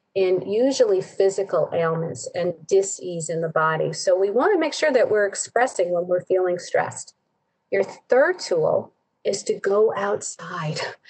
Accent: American